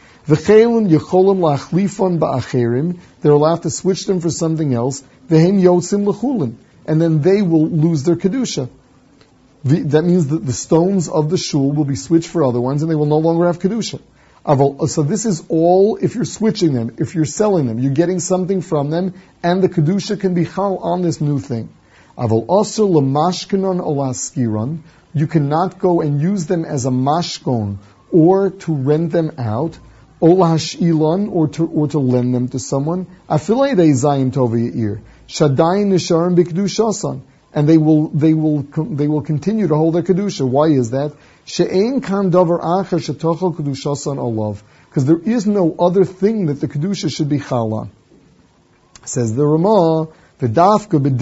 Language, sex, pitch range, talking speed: English, male, 140-180 Hz, 160 wpm